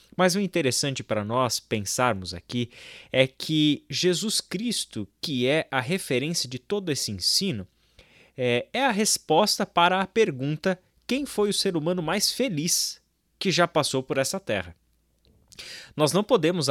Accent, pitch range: Brazilian, 120-165 Hz